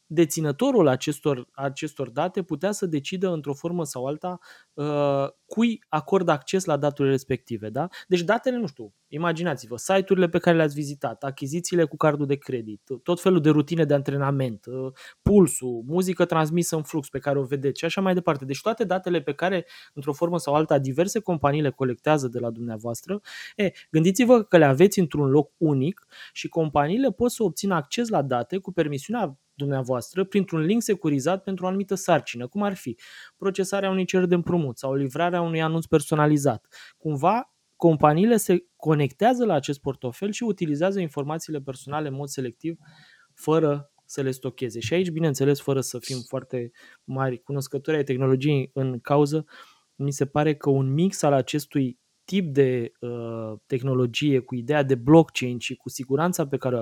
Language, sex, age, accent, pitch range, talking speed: Romanian, male, 20-39, native, 135-180 Hz, 170 wpm